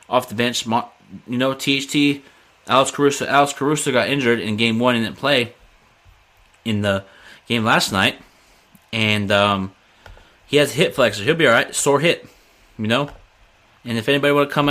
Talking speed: 180 wpm